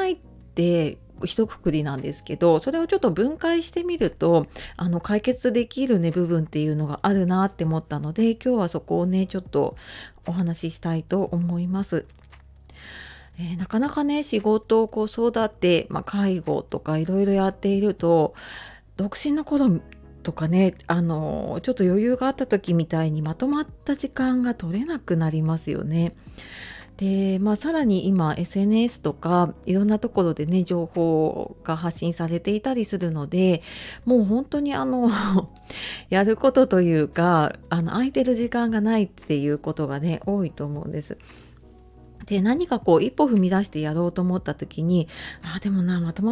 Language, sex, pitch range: Japanese, female, 165-230 Hz